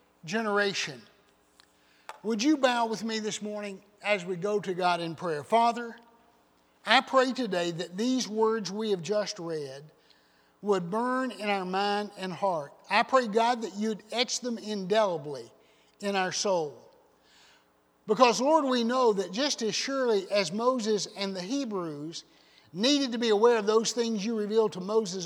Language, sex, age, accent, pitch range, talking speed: English, male, 60-79, American, 175-235 Hz, 160 wpm